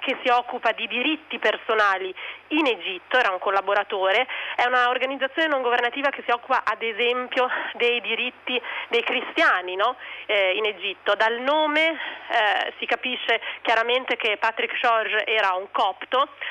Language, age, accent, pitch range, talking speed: Italian, 30-49, native, 215-275 Hz, 145 wpm